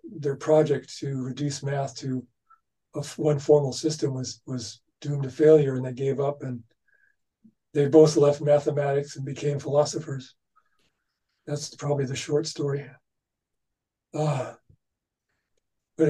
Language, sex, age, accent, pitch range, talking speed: English, male, 40-59, American, 140-160 Hz, 130 wpm